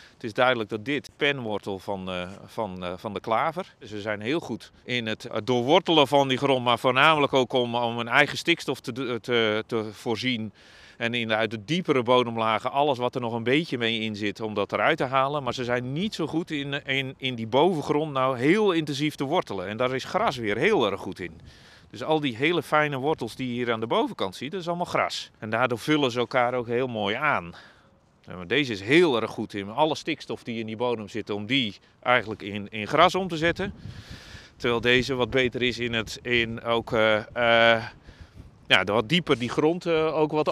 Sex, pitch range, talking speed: male, 115-145 Hz, 215 wpm